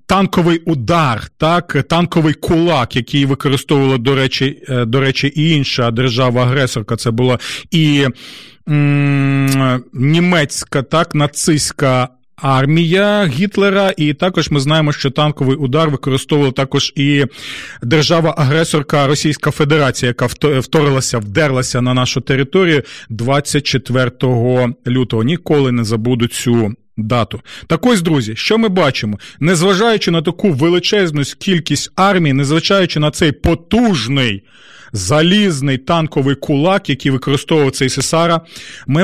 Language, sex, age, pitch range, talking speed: Ukrainian, male, 40-59, 130-175 Hz, 115 wpm